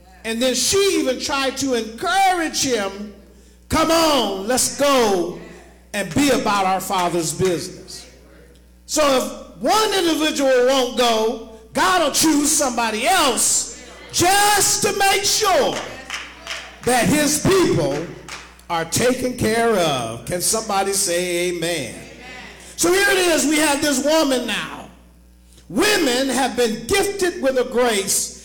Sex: male